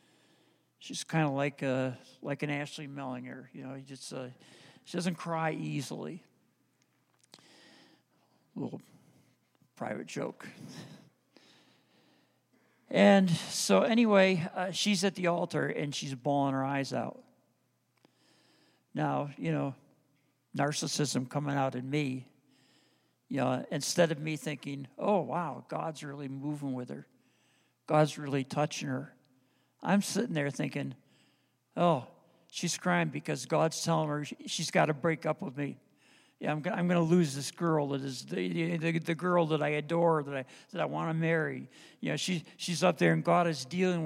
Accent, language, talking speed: American, English, 155 wpm